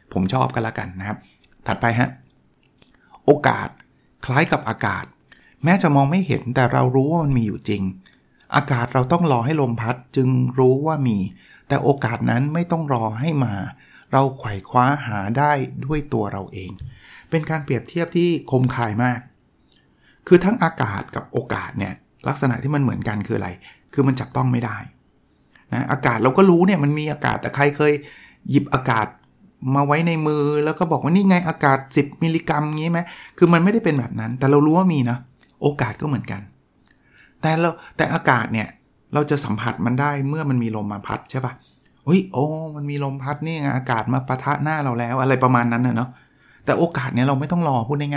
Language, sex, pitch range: Thai, male, 120-155 Hz